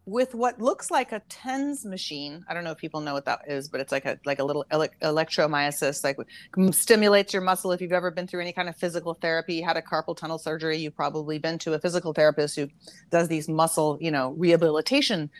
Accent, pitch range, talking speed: American, 160-205 Hz, 220 wpm